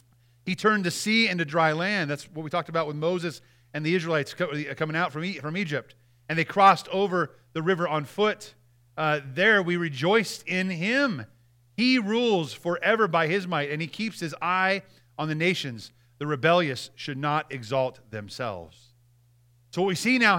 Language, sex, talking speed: English, male, 175 wpm